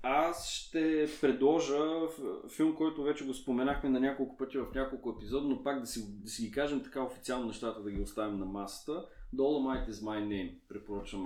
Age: 20-39